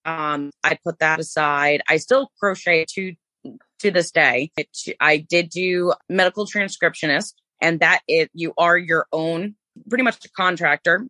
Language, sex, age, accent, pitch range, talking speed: English, female, 20-39, American, 155-200 Hz, 155 wpm